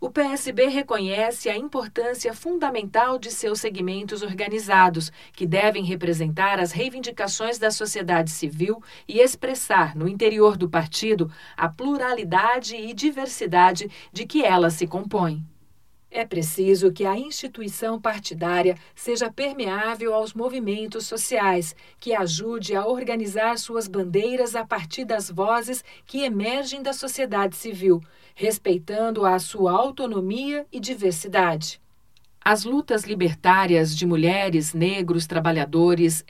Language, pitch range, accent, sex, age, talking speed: Portuguese, 180-230 Hz, Brazilian, female, 40-59, 120 wpm